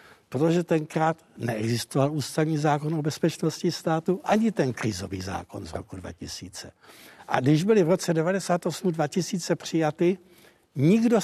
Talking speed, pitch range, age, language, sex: 130 wpm, 130-180 Hz, 60-79, Czech, male